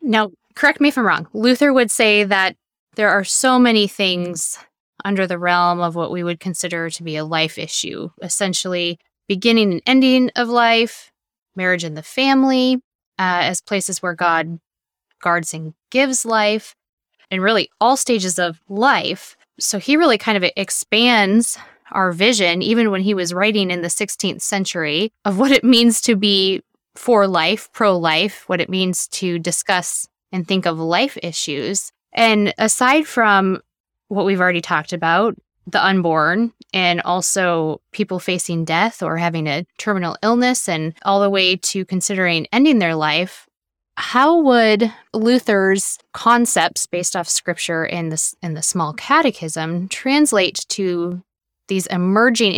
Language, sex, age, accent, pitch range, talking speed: English, female, 20-39, American, 175-225 Hz, 155 wpm